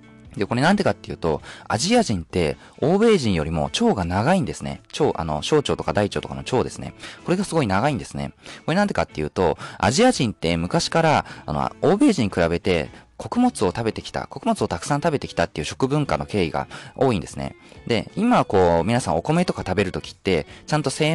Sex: male